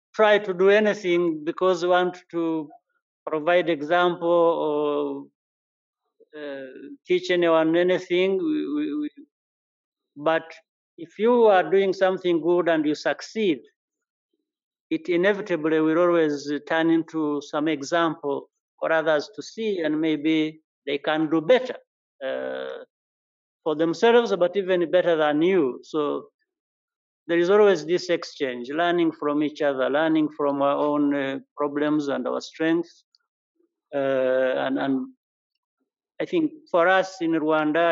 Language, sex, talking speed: English, male, 130 wpm